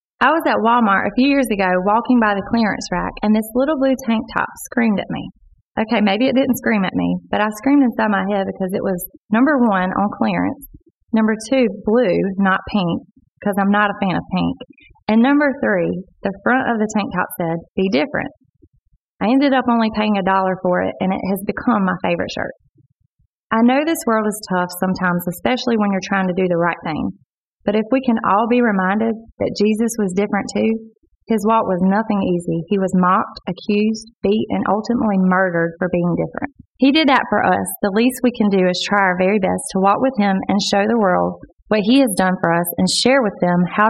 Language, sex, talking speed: English, female, 220 wpm